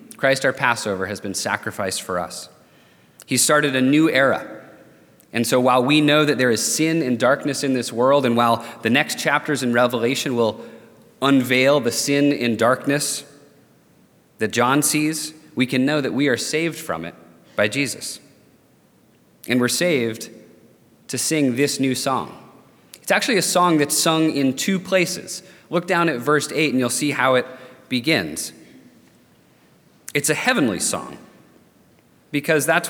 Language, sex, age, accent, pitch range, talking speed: English, male, 30-49, American, 125-160 Hz, 160 wpm